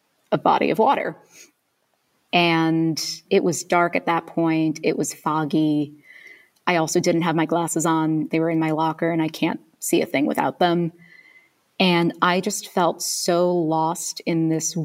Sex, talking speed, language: female, 170 wpm, English